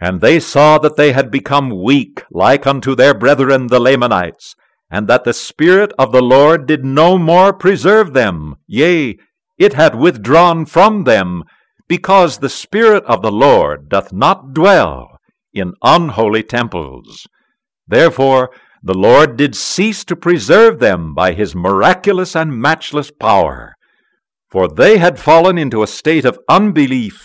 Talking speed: 150 wpm